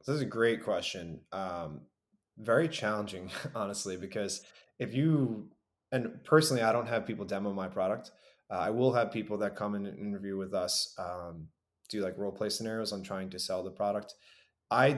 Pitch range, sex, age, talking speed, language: 95-115 Hz, male, 20-39, 180 wpm, English